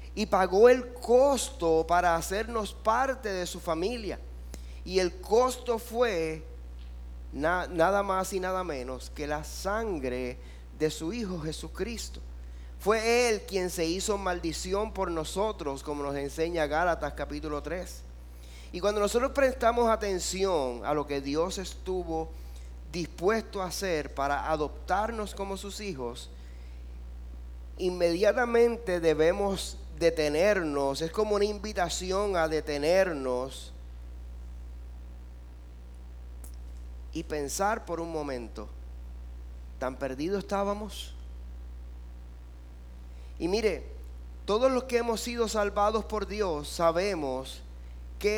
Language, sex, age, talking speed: Spanish, male, 30-49, 110 wpm